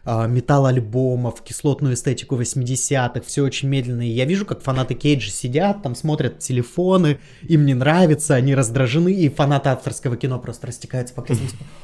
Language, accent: Russian, native